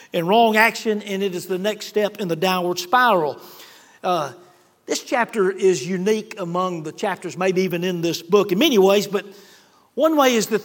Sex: male